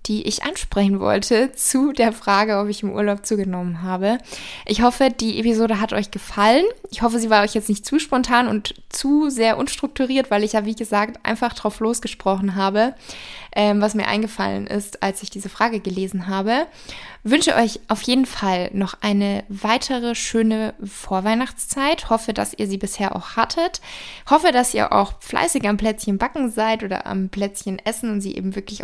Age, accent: 20-39, German